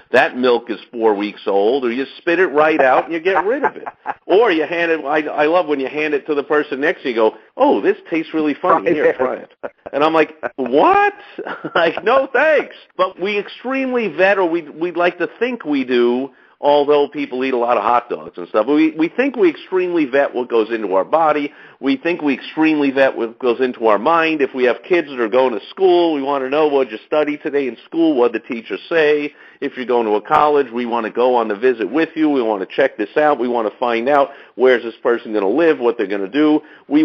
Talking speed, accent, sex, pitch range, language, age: 255 wpm, American, male, 130-160 Hz, English, 50-69